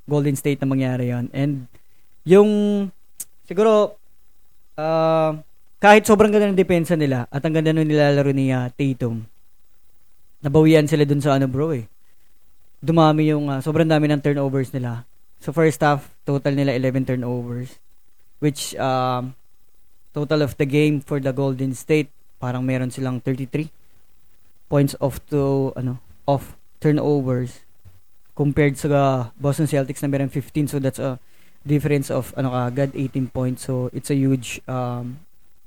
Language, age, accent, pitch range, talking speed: Filipino, 20-39, native, 130-155 Hz, 145 wpm